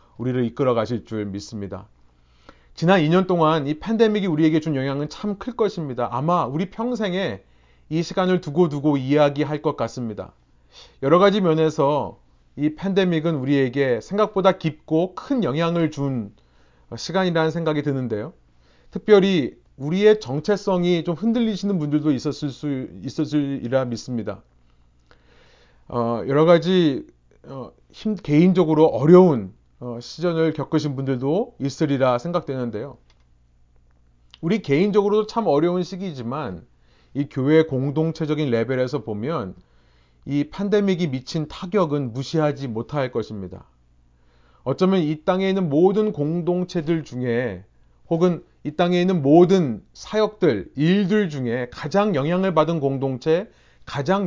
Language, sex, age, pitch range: Korean, male, 40-59, 115-175 Hz